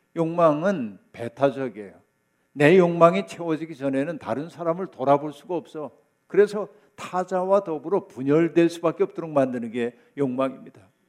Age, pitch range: 50-69, 135-175 Hz